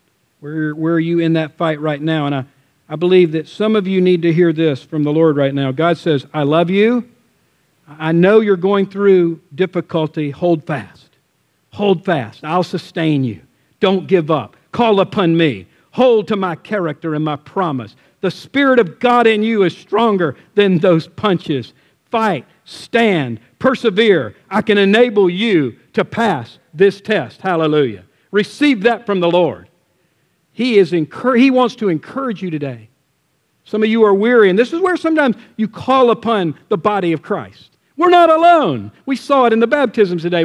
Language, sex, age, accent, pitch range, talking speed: English, male, 50-69, American, 160-240 Hz, 175 wpm